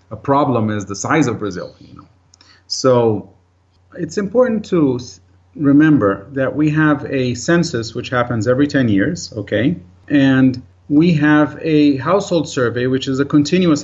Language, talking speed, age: English, 150 wpm, 40-59